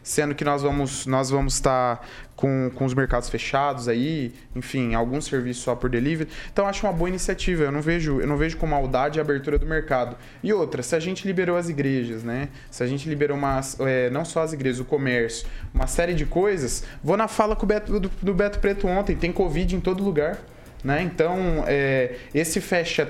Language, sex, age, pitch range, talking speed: Portuguese, male, 20-39, 130-160 Hz, 220 wpm